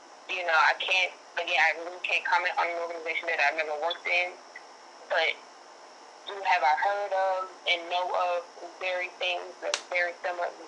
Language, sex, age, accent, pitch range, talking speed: English, female, 20-39, American, 170-185 Hz, 180 wpm